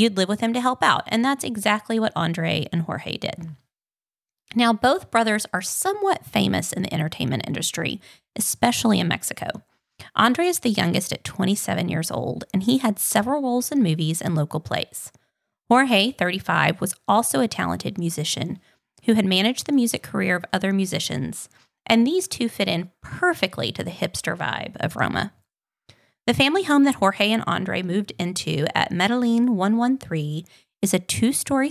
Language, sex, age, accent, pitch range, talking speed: English, female, 20-39, American, 175-235 Hz, 170 wpm